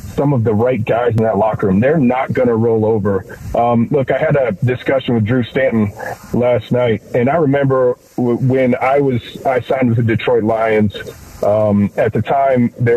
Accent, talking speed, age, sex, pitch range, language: American, 195 wpm, 40-59, male, 115-140 Hz, English